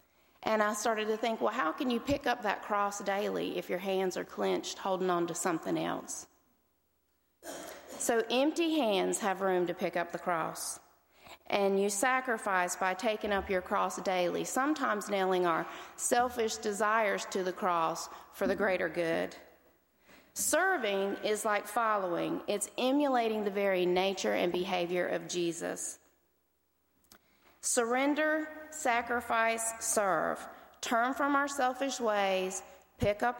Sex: female